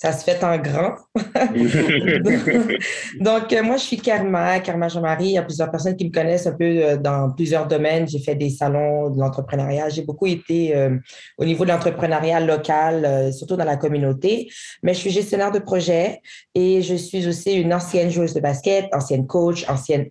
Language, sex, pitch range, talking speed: English, female, 140-175 Hz, 195 wpm